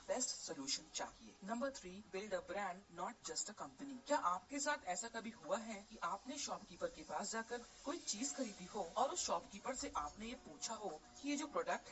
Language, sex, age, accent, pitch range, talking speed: Hindi, female, 40-59, native, 200-275 Hz, 205 wpm